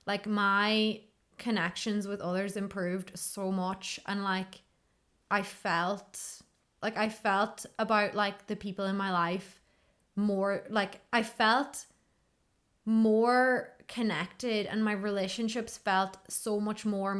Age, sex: 20-39, female